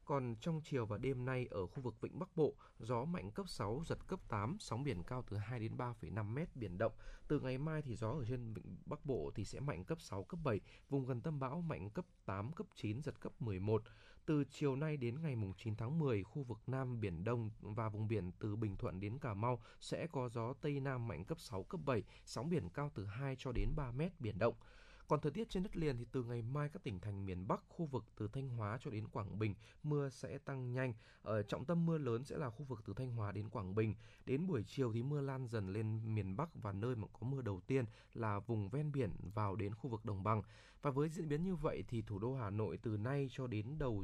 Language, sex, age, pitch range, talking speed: Vietnamese, male, 20-39, 105-140 Hz, 255 wpm